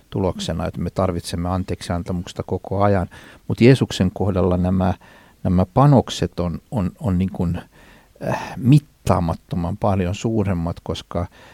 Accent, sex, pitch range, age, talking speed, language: native, male, 95-125 Hz, 60-79, 115 wpm, Finnish